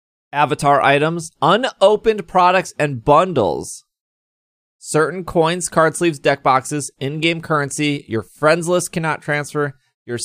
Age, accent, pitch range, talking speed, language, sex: 30-49, American, 120-160 Hz, 125 wpm, English, male